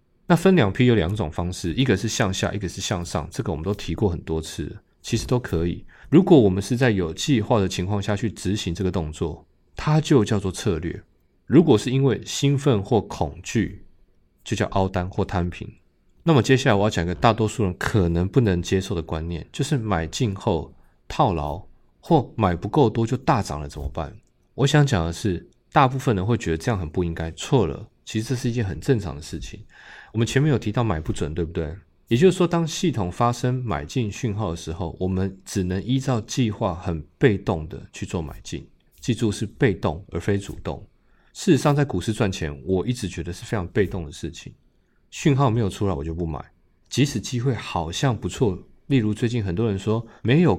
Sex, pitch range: male, 85-120 Hz